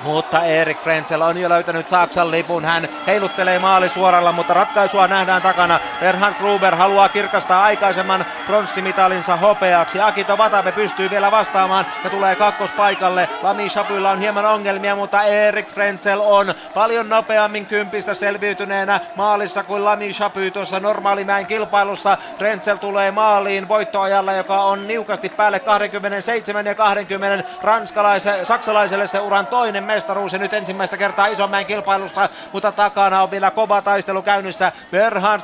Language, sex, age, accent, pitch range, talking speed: Finnish, male, 30-49, native, 195-215 Hz, 135 wpm